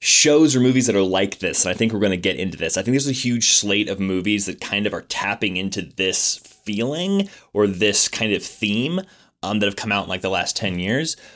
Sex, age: male, 20-39